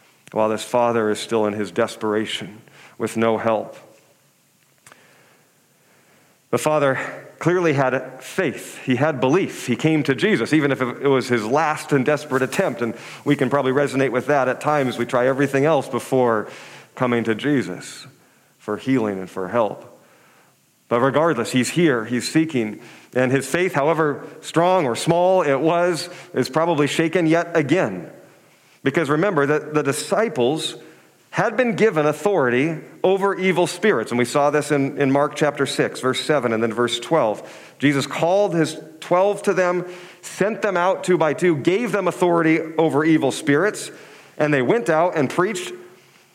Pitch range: 125-170 Hz